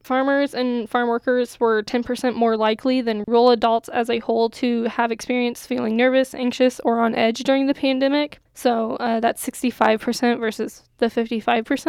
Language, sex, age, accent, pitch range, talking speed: English, female, 10-29, American, 225-250 Hz, 160 wpm